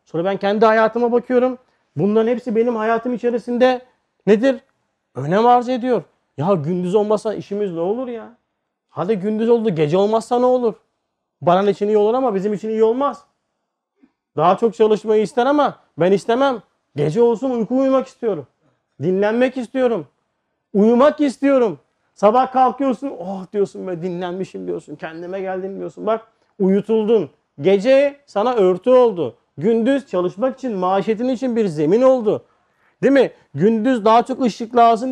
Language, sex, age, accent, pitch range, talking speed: Turkish, male, 40-59, native, 190-255 Hz, 145 wpm